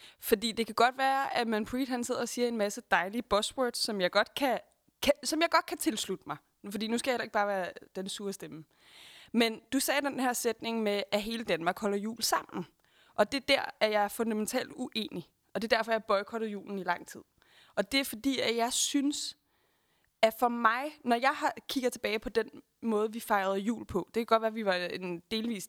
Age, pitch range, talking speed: 20-39, 210-260 Hz, 230 wpm